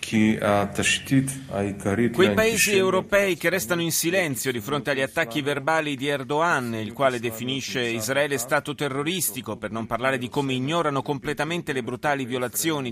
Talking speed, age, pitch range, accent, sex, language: 140 wpm, 30-49, 115-150 Hz, native, male, Italian